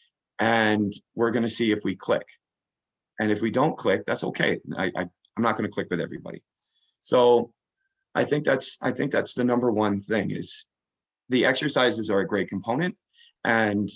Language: English